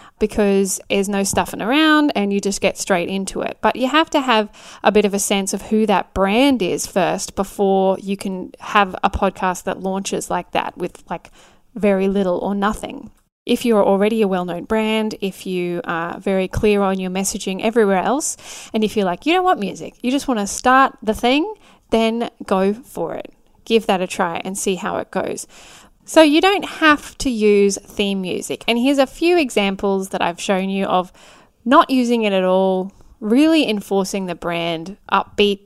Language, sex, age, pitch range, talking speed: English, female, 10-29, 195-235 Hz, 195 wpm